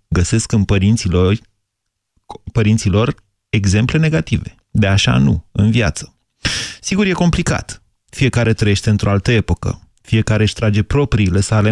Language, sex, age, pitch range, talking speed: Romanian, male, 30-49, 100-125 Hz, 125 wpm